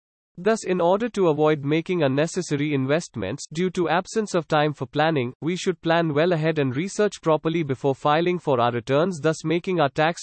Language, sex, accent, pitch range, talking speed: English, male, Indian, 140-175 Hz, 190 wpm